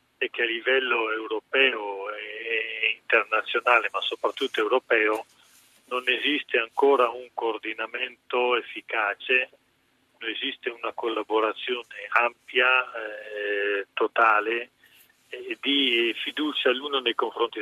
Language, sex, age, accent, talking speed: Italian, male, 40-59, native, 100 wpm